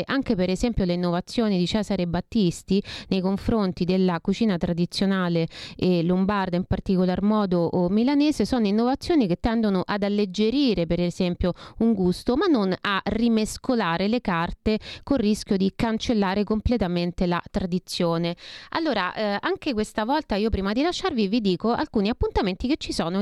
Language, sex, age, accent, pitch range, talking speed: Italian, female, 30-49, native, 180-240 Hz, 150 wpm